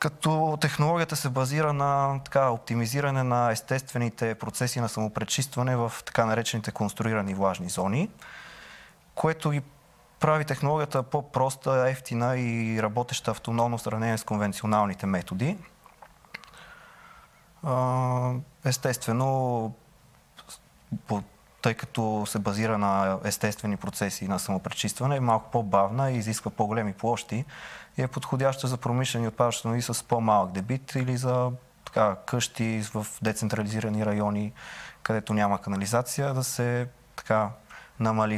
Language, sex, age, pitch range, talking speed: Bulgarian, male, 20-39, 105-130 Hz, 115 wpm